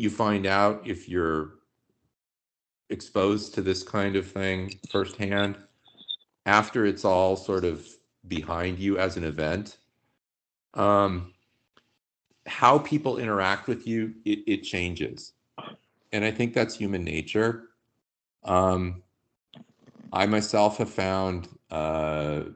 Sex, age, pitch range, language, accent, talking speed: male, 40-59, 80-105 Hz, English, American, 115 wpm